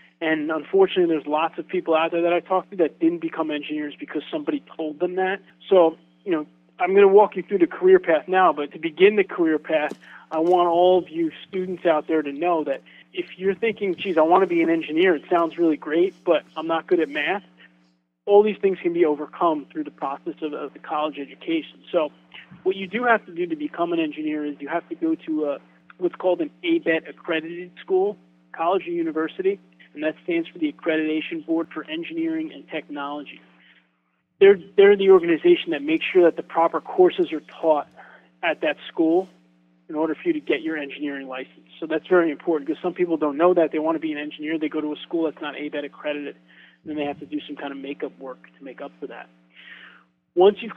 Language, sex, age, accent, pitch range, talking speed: English, male, 20-39, American, 150-190 Hz, 225 wpm